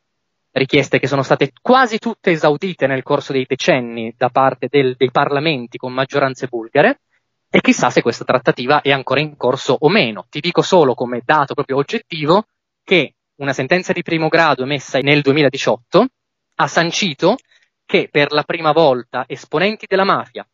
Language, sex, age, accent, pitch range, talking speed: Italian, male, 20-39, native, 130-170 Hz, 160 wpm